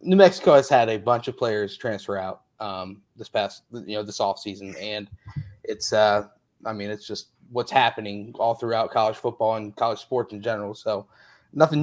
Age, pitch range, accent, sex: 20-39, 110-130 Hz, American, male